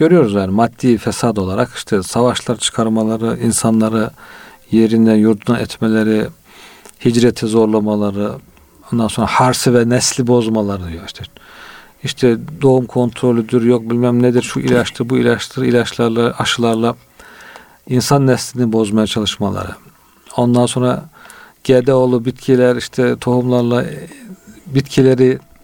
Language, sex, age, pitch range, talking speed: Turkish, male, 50-69, 115-140 Hz, 105 wpm